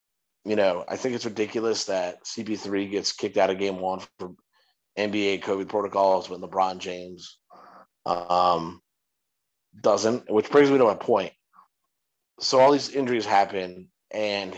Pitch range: 95-125 Hz